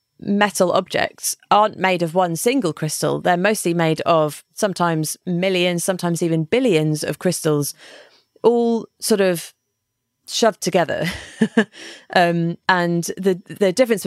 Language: English